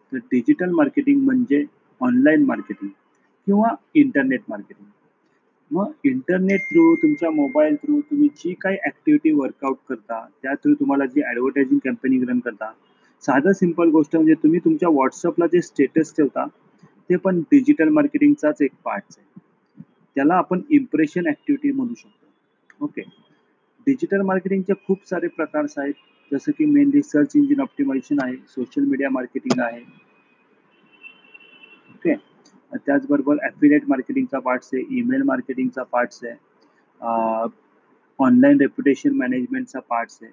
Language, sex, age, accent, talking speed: Marathi, male, 30-49, native, 120 wpm